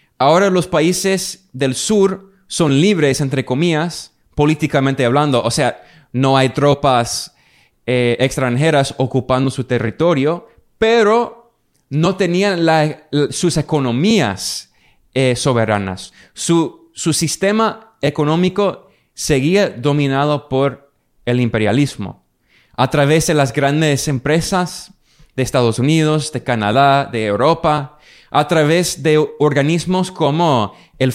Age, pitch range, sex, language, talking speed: 20-39, 130-170 Hz, male, Spanish, 110 wpm